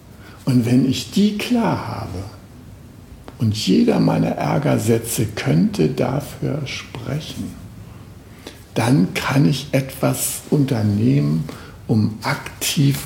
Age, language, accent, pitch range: 60-79, German, German, 100-125 Hz